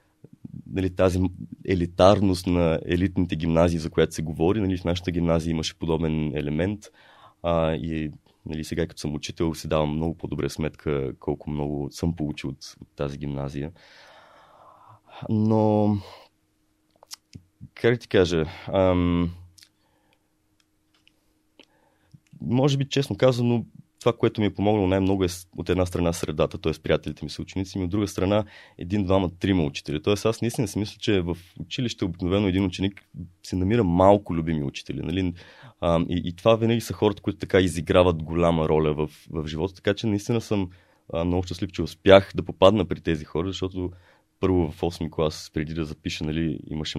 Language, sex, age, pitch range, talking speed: Bulgarian, male, 20-39, 80-100 Hz, 160 wpm